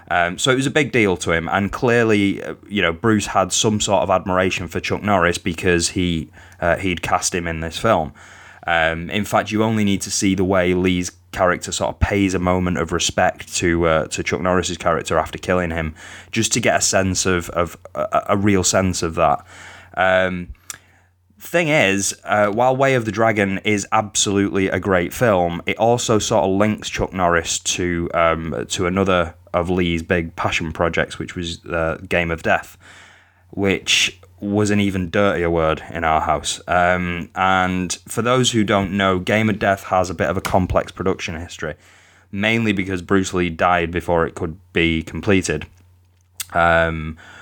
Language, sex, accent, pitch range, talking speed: English, male, British, 85-100 Hz, 185 wpm